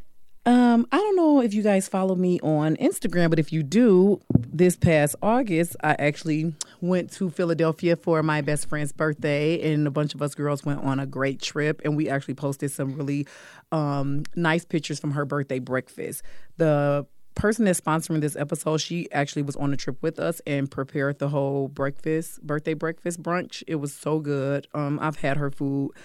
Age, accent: 30-49, American